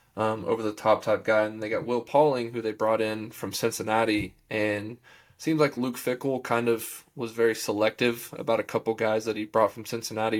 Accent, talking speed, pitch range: American, 210 wpm, 105-115 Hz